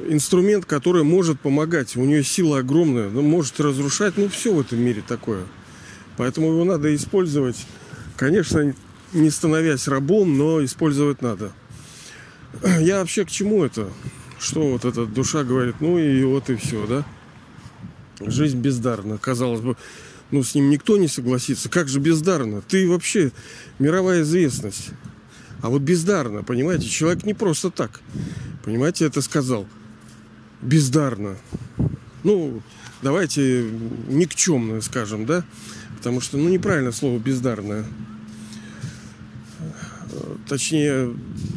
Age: 40-59